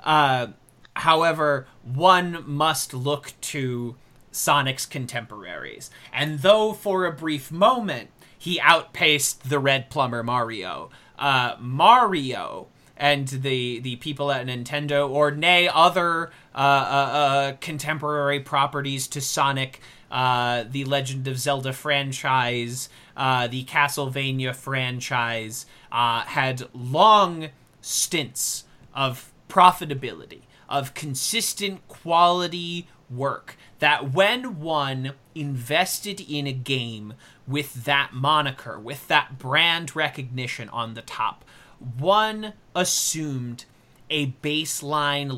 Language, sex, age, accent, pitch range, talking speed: English, male, 30-49, American, 130-155 Hz, 105 wpm